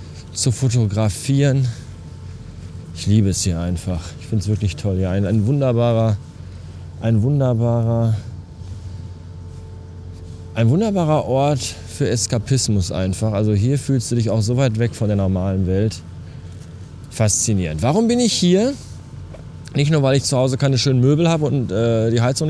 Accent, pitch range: German, 100-155 Hz